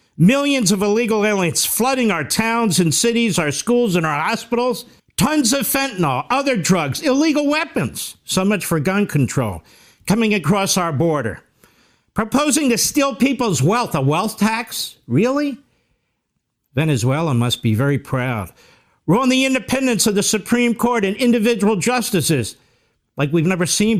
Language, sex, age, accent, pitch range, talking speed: English, male, 50-69, American, 155-235 Hz, 150 wpm